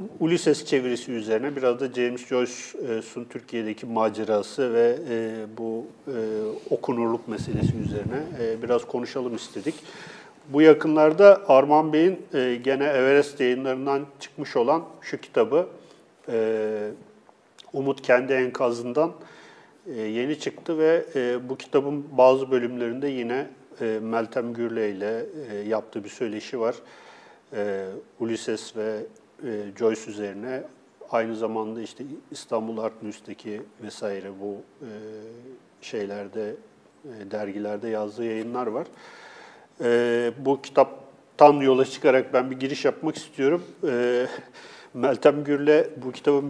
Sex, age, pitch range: male, 40-59, 115-145 Hz